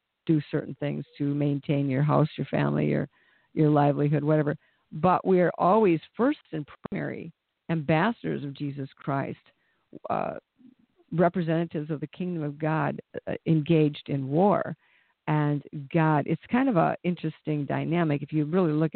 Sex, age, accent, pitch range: female, 50-69, American, 145-170 Hz